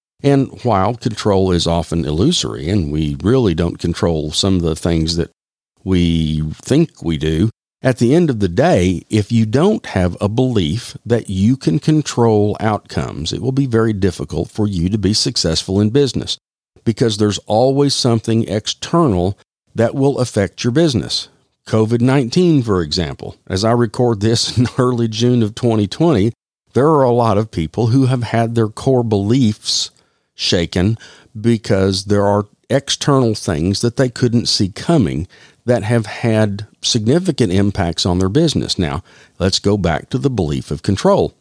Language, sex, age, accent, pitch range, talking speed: English, male, 50-69, American, 95-125 Hz, 160 wpm